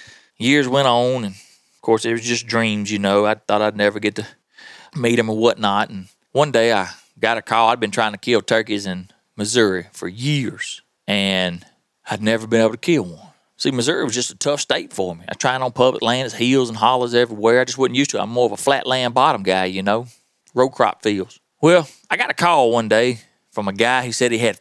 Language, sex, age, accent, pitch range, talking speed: English, male, 30-49, American, 115-175 Hz, 240 wpm